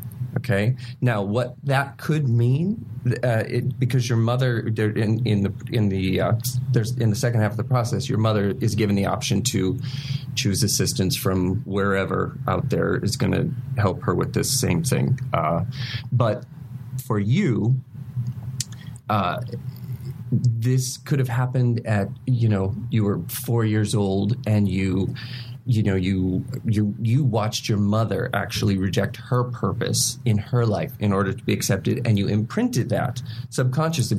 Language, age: English, 30-49